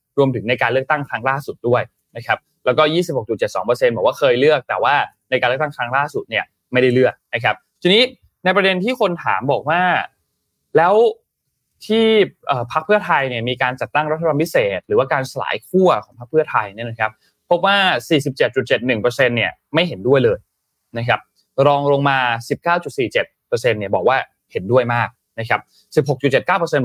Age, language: 20-39, Thai